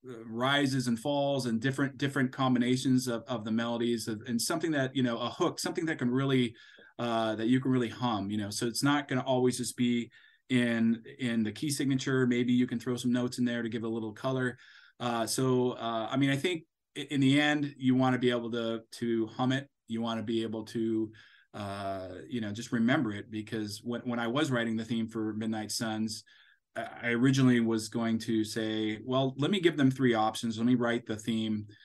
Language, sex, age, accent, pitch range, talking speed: English, male, 30-49, American, 110-125 Hz, 225 wpm